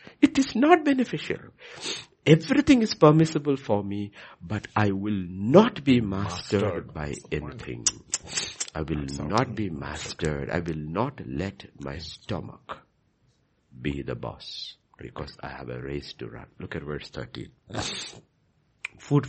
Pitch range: 70-105 Hz